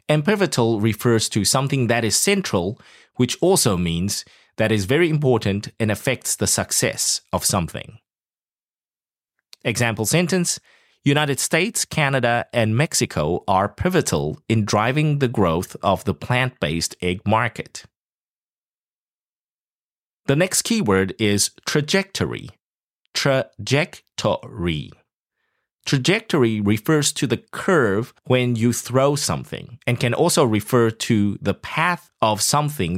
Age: 30-49